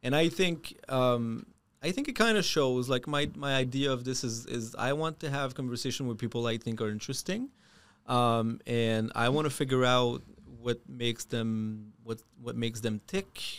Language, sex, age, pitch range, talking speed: English, male, 30-49, 120-150 Hz, 195 wpm